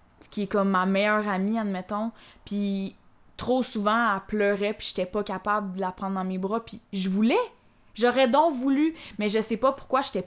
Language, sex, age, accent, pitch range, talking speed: French, female, 20-39, Canadian, 195-215 Hz, 200 wpm